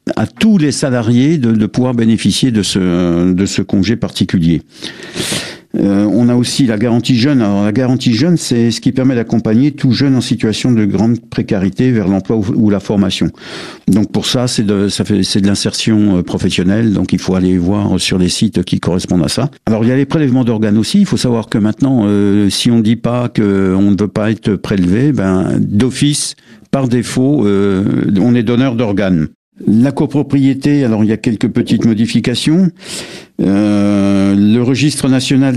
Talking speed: 190 wpm